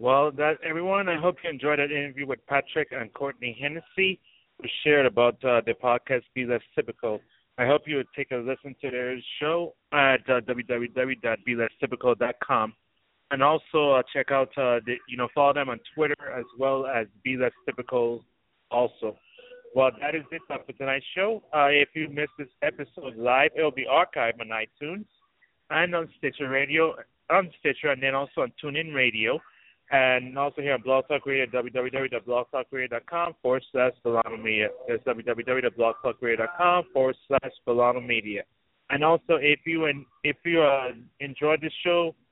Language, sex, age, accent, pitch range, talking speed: English, male, 30-49, American, 125-150 Hz, 160 wpm